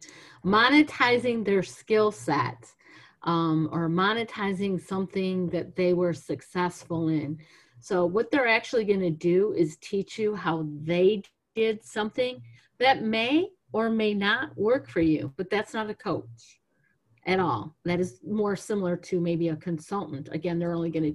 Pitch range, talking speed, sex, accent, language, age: 160-190 Hz, 150 wpm, female, American, English, 50-69